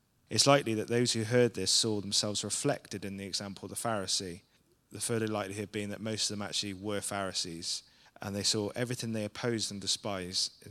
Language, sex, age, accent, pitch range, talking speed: English, male, 30-49, British, 100-120 Hz, 200 wpm